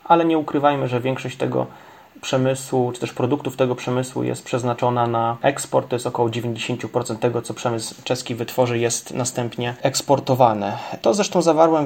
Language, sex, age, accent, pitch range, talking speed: Polish, male, 30-49, native, 115-135 Hz, 155 wpm